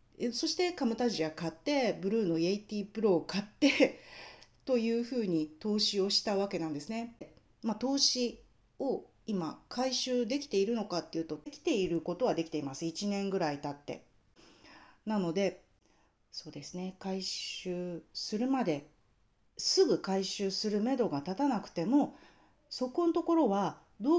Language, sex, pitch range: Japanese, female, 165-255 Hz